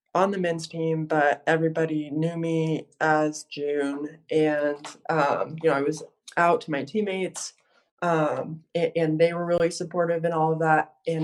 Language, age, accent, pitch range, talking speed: English, 20-39, American, 155-170 Hz, 170 wpm